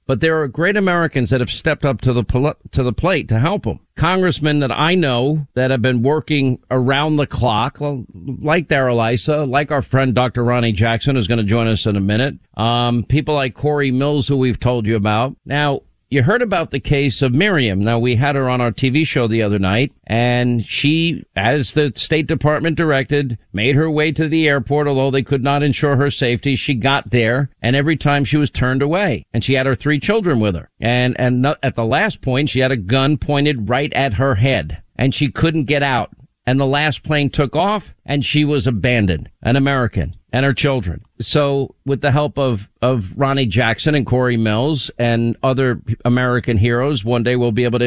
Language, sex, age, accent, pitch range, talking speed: English, male, 50-69, American, 120-145 Hz, 215 wpm